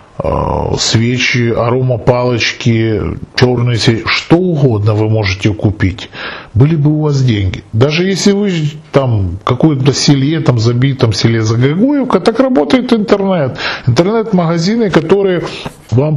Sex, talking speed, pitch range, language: male, 115 wpm, 115-170 Hz, Russian